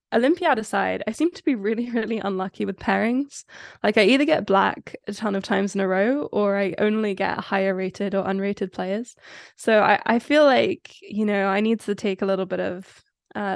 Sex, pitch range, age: female, 195-225 Hz, 10-29